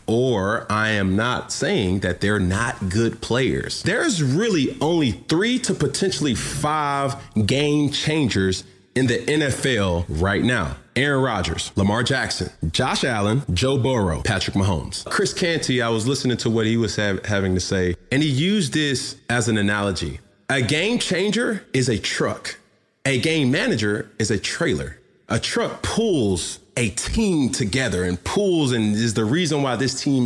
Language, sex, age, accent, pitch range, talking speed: English, male, 30-49, American, 100-135 Hz, 160 wpm